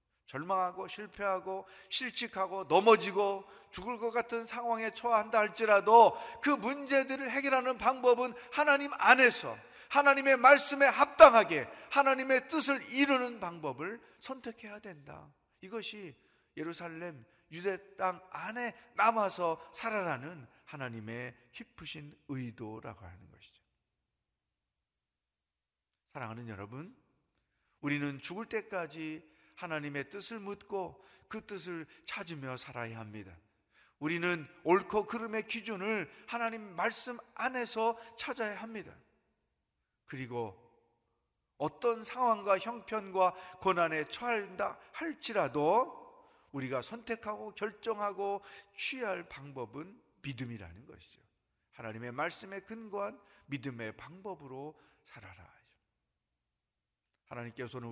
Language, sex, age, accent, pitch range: Korean, male, 40-59, native, 140-230 Hz